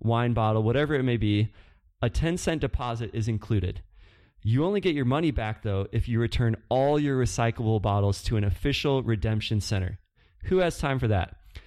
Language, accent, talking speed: English, American, 185 wpm